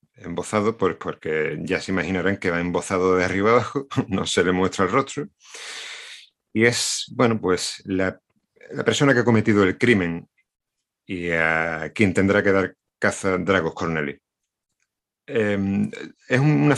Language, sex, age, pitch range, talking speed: Spanish, male, 40-59, 90-110 Hz, 155 wpm